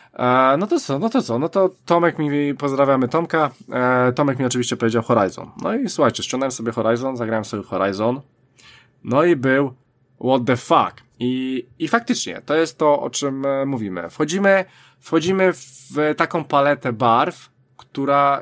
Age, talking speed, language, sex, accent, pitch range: 20-39, 155 wpm, Polish, male, native, 120-155 Hz